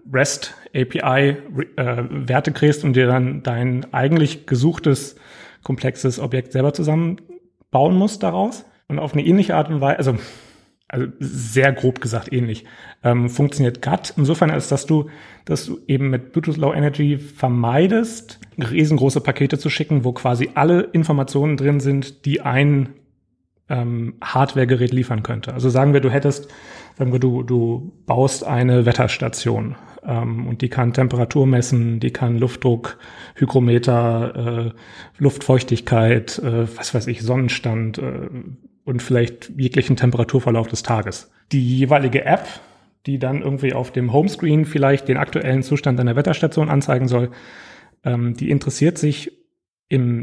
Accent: German